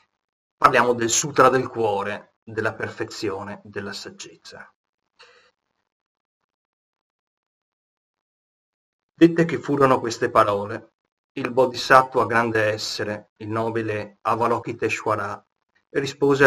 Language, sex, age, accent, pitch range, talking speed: Italian, male, 30-49, native, 110-130 Hz, 80 wpm